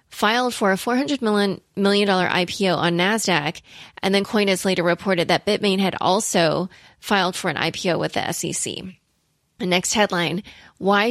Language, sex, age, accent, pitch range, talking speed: English, female, 20-39, American, 175-205 Hz, 150 wpm